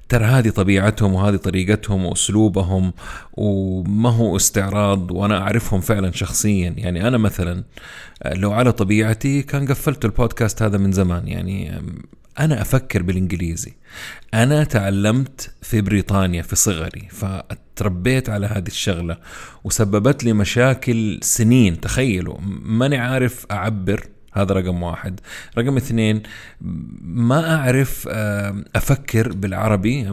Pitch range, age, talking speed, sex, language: 95-115 Hz, 30-49, 110 wpm, male, Arabic